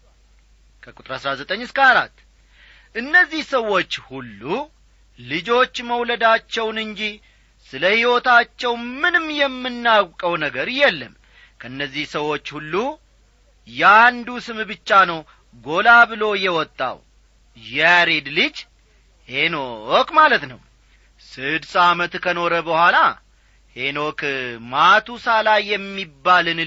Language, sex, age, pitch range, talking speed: Amharic, male, 40-59, 145-235 Hz, 85 wpm